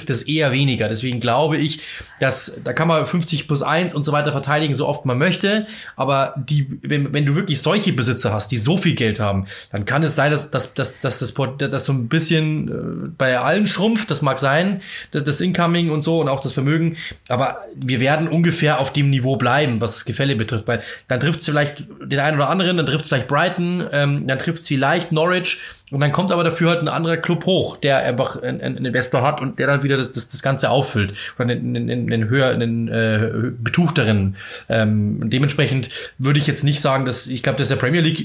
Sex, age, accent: male, 20-39, German